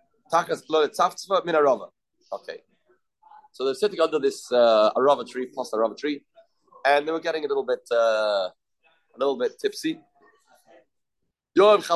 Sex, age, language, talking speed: male, 30-49, English, 120 wpm